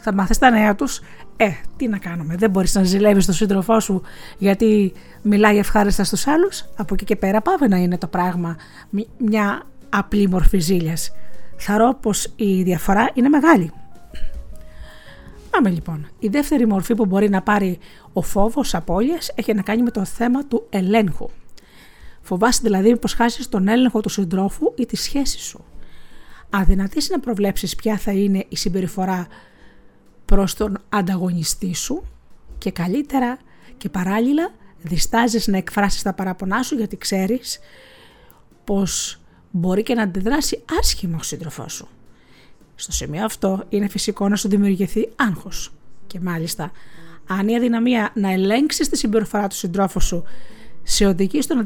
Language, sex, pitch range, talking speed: Greek, female, 185-225 Hz, 150 wpm